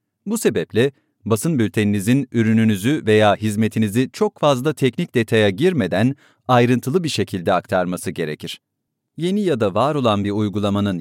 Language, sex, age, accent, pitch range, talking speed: English, male, 40-59, Turkish, 105-140 Hz, 130 wpm